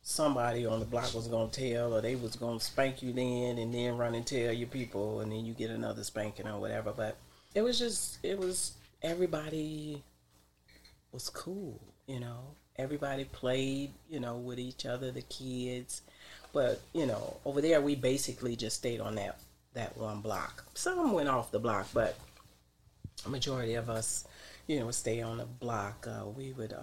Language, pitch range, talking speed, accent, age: English, 110-130 Hz, 190 wpm, American, 40-59